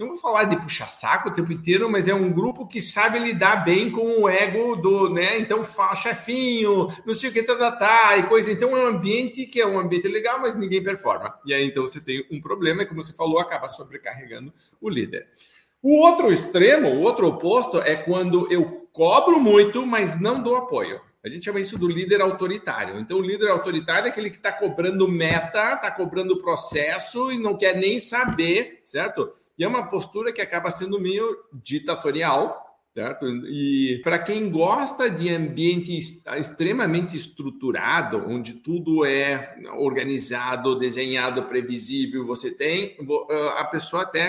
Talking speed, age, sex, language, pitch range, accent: 180 wpm, 50-69, male, Portuguese, 150-225 Hz, Brazilian